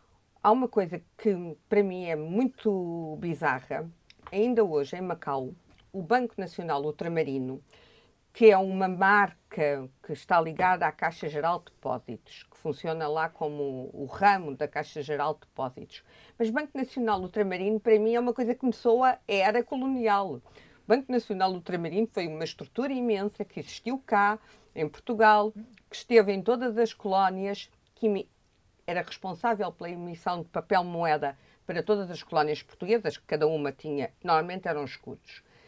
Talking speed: 155 wpm